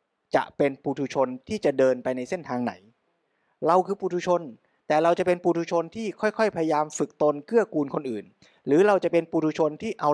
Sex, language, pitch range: male, Thai, 130-180 Hz